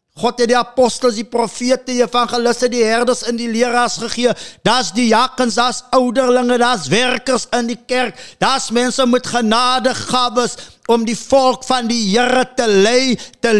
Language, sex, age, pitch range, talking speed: English, male, 50-69, 200-245 Hz, 185 wpm